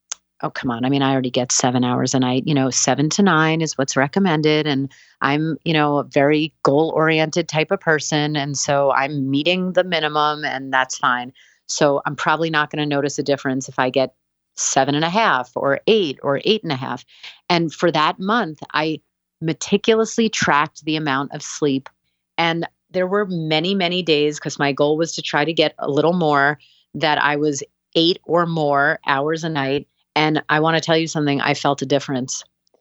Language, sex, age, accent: English, female, 30-49, American